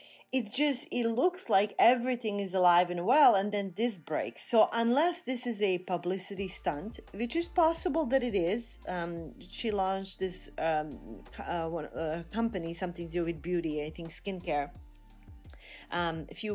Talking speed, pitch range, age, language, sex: 170 wpm, 165-220 Hz, 30-49, English, female